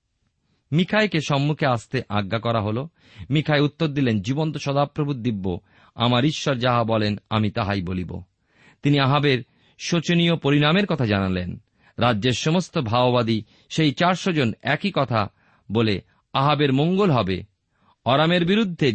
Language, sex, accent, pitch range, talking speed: Bengali, male, native, 105-150 Hz, 55 wpm